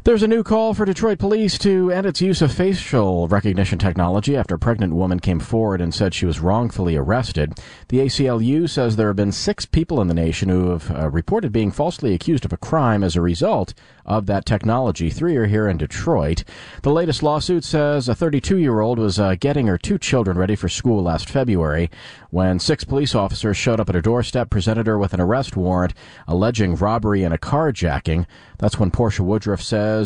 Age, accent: 40-59, American